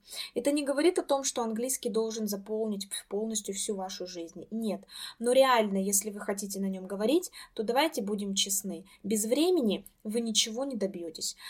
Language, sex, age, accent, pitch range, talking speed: Russian, female, 20-39, native, 195-240 Hz, 165 wpm